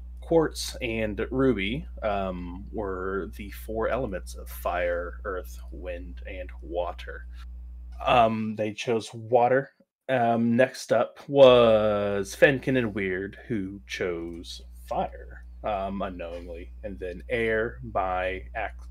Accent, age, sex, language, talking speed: American, 20-39, male, English, 110 wpm